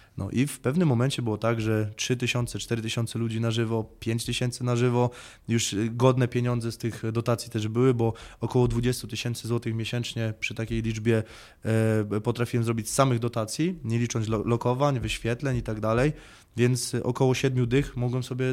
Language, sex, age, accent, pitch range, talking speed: Polish, male, 20-39, native, 110-120 Hz, 170 wpm